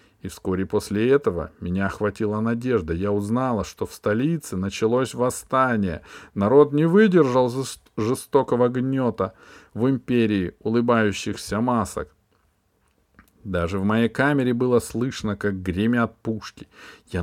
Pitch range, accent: 95-125 Hz, native